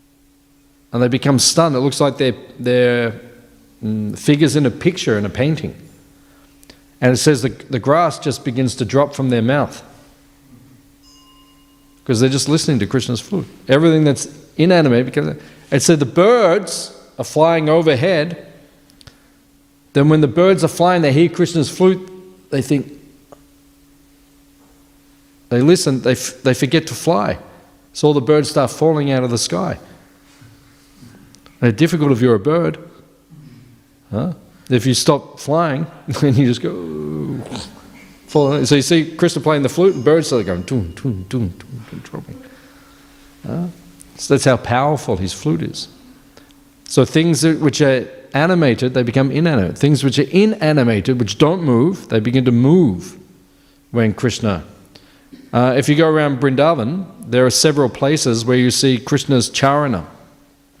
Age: 40-59